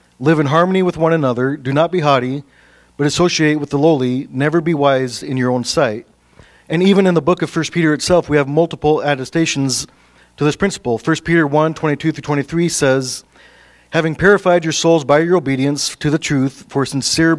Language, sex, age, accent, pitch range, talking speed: English, male, 40-59, American, 130-165 Hz, 190 wpm